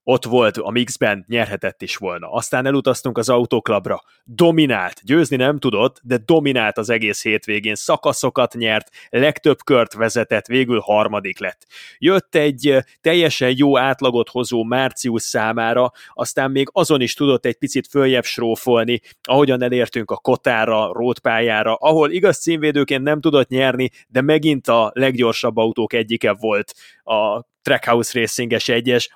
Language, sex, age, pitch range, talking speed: Hungarian, male, 30-49, 120-140 Hz, 140 wpm